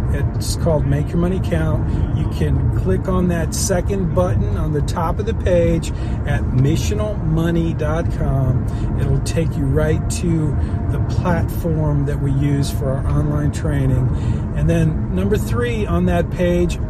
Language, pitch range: English, 105-135 Hz